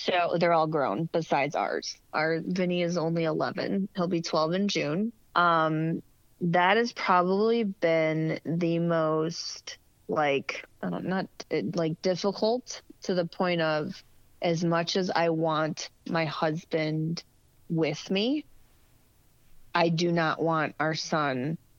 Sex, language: female, English